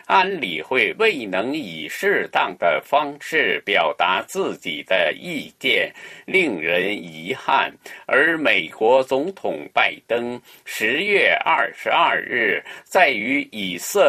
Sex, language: male, Chinese